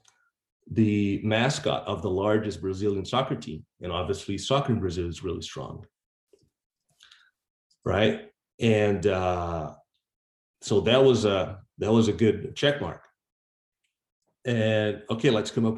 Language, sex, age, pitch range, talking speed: English, male, 30-49, 95-120 Hz, 130 wpm